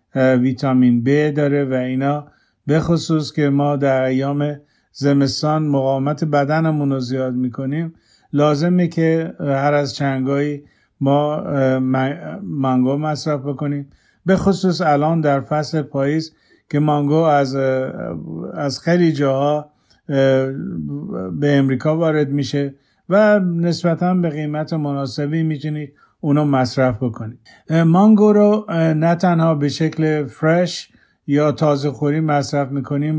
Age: 50-69